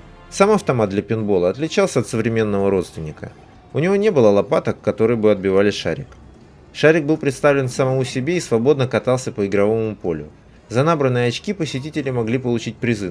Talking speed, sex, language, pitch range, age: 160 wpm, male, Russian, 110-150 Hz, 20-39